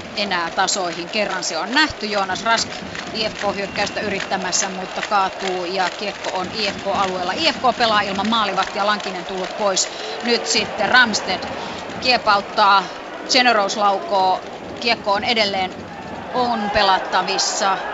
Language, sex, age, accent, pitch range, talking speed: Finnish, female, 30-49, native, 195-245 Hz, 120 wpm